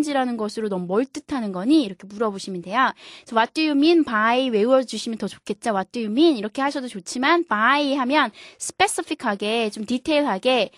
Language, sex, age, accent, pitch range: Korean, female, 20-39, native, 205-280 Hz